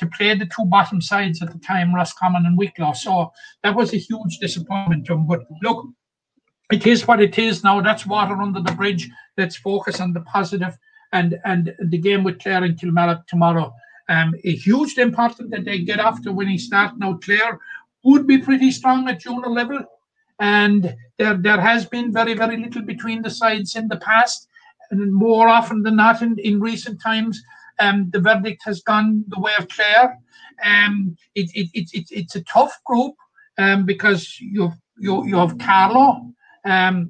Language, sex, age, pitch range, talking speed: English, male, 60-79, 180-225 Hz, 185 wpm